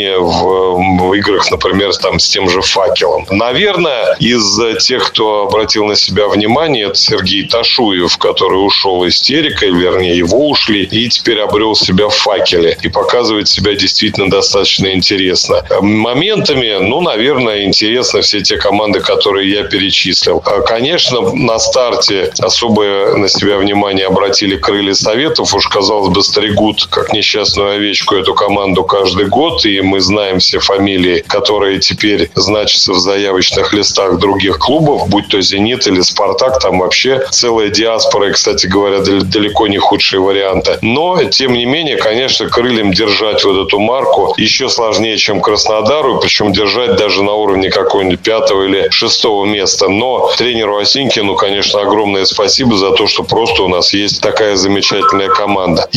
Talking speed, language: 145 wpm, Russian